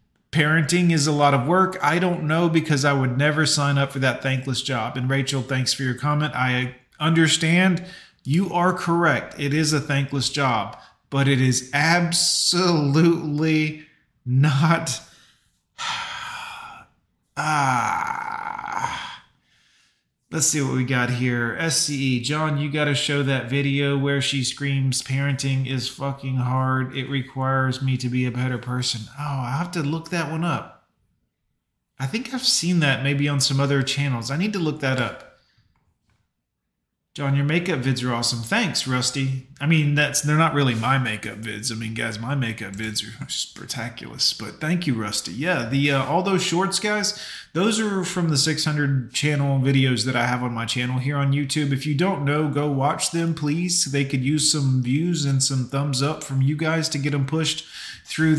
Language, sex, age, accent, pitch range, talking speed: English, male, 30-49, American, 130-165 Hz, 175 wpm